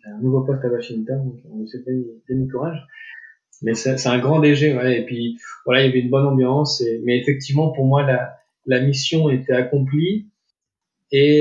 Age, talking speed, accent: 20-39, 190 wpm, French